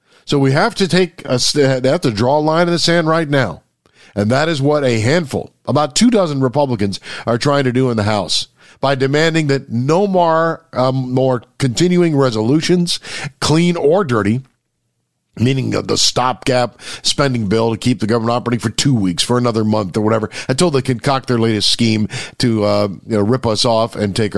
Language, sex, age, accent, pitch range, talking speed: English, male, 50-69, American, 120-160 Hz, 195 wpm